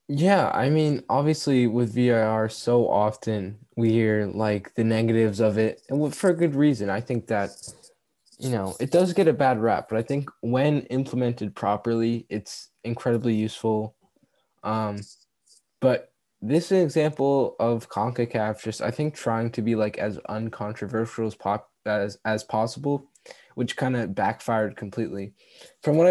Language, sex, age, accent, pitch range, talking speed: English, male, 10-29, American, 110-130 Hz, 155 wpm